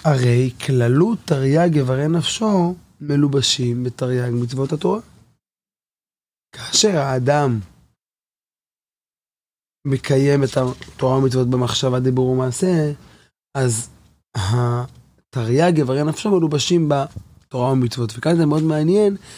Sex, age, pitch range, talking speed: male, 20-39, 125-165 Hz, 90 wpm